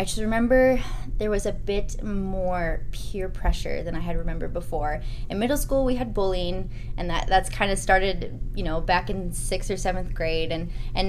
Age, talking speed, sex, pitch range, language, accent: 20-39, 200 wpm, female, 160-205 Hz, English, American